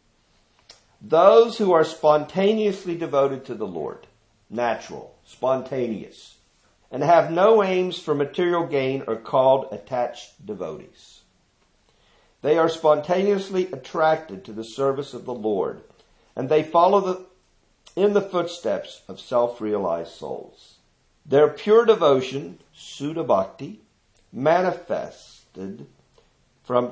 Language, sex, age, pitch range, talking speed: English, male, 50-69, 120-175 Hz, 105 wpm